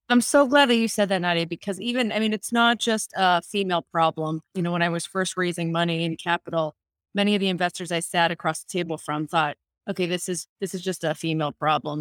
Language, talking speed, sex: English, 240 wpm, female